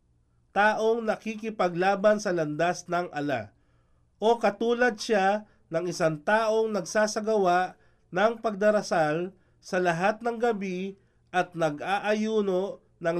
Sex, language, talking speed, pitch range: male, Filipino, 100 wpm, 150-215 Hz